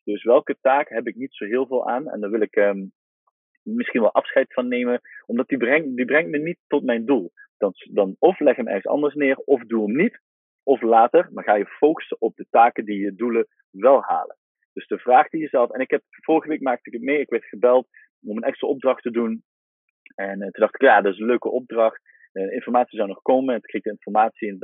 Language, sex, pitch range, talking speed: Dutch, male, 110-160 Hz, 250 wpm